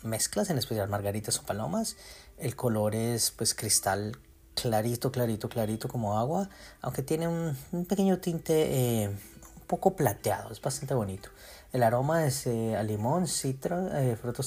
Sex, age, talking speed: male, 30-49, 160 wpm